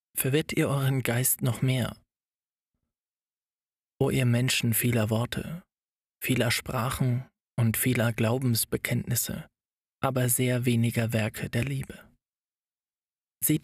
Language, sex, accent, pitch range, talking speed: German, male, German, 120-140 Hz, 100 wpm